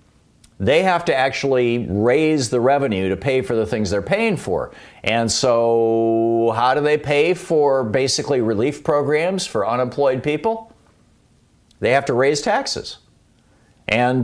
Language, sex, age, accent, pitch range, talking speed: English, male, 50-69, American, 115-155 Hz, 145 wpm